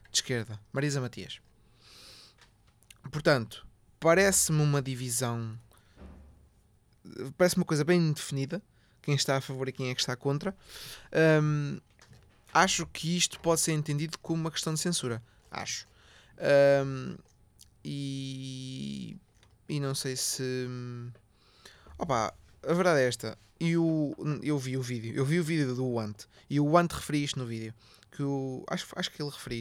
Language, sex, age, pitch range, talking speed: Portuguese, male, 20-39, 115-155 Hz, 140 wpm